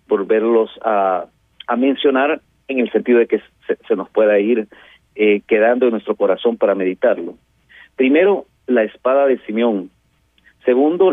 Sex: male